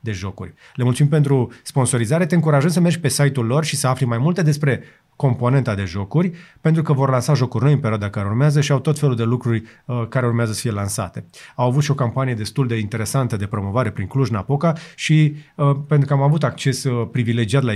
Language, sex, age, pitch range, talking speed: Romanian, male, 30-49, 115-150 Hz, 225 wpm